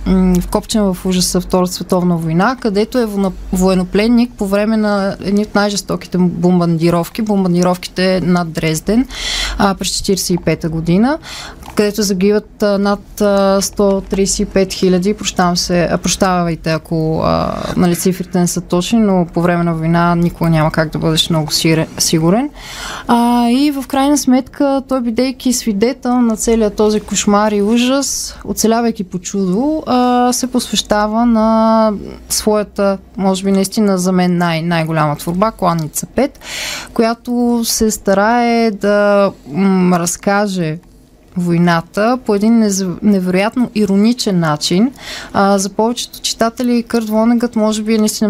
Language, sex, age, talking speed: Bulgarian, female, 20-39, 125 wpm